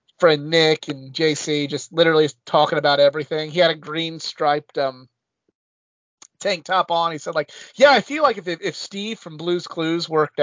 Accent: American